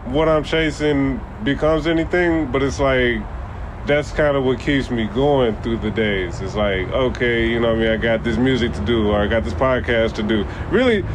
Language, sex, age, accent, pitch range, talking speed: English, male, 20-39, American, 110-145 Hz, 215 wpm